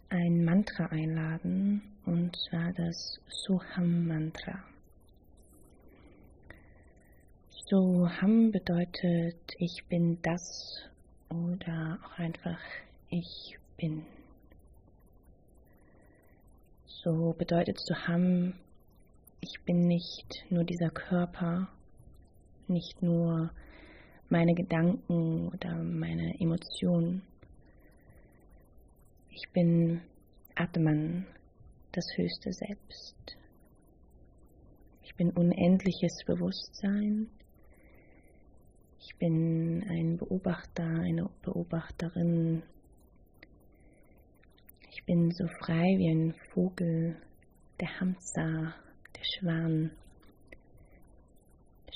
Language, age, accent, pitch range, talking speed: German, 30-49, German, 160-180 Hz, 70 wpm